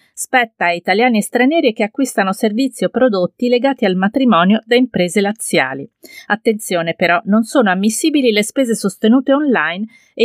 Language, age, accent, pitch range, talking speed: Italian, 40-59, native, 185-235 Hz, 150 wpm